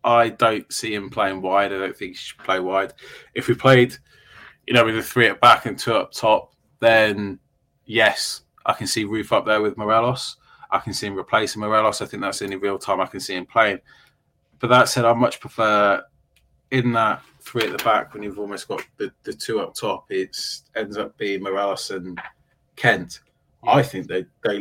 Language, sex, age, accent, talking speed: English, male, 20-39, British, 210 wpm